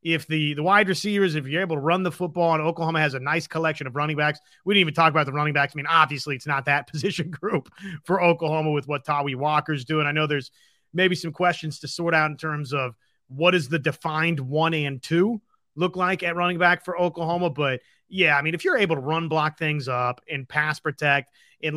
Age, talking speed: 30-49, 235 wpm